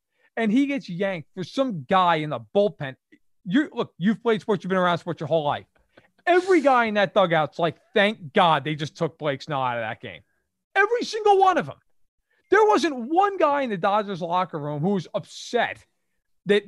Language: English